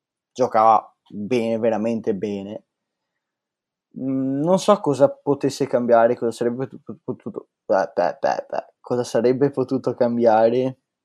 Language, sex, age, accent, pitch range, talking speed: Italian, male, 10-29, native, 110-130 Hz, 110 wpm